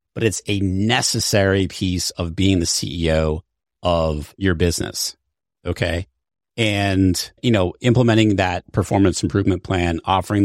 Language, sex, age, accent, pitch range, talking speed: English, male, 30-49, American, 90-120 Hz, 125 wpm